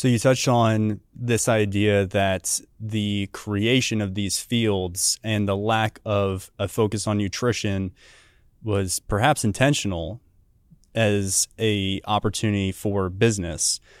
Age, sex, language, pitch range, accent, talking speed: 20-39, male, English, 100-120 Hz, American, 120 wpm